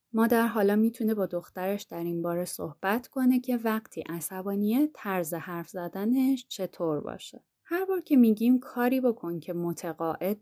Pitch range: 175-235 Hz